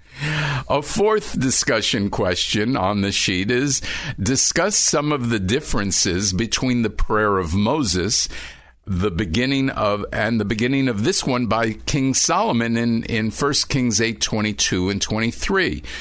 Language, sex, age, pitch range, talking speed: English, male, 50-69, 100-145 Hz, 140 wpm